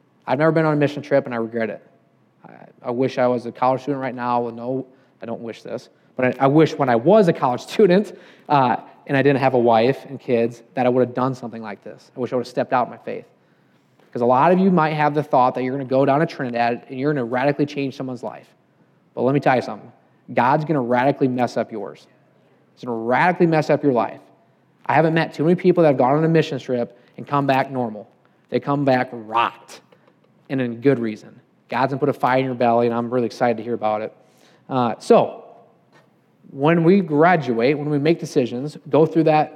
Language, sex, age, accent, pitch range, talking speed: English, male, 20-39, American, 125-160 Hz, 245 wpm